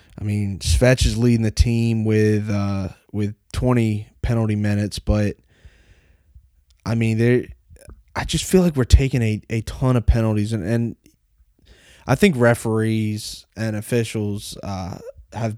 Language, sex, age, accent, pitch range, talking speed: English, male, 20-39, American, 100-115 Hz, 145 wpm